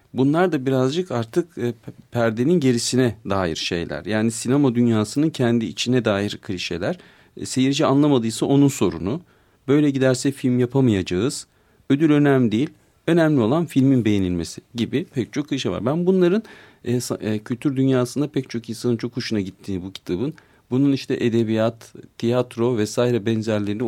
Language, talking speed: Turkish, 135 wpm